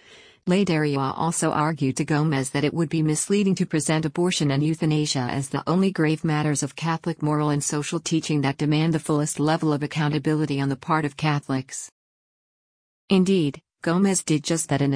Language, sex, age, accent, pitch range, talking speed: English, female, 50-69, American, 145-170 Hz, 175 wpm